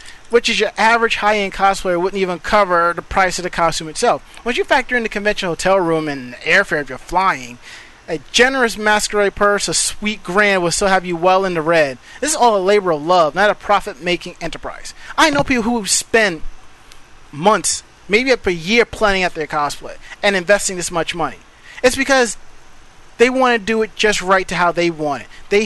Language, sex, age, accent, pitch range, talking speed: English, male, 30-49, American, 170-220 Hz, 205 wpm